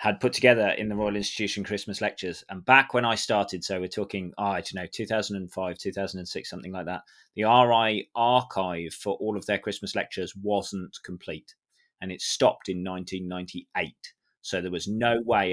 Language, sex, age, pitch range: English, male, 30-49, 95-110 Hz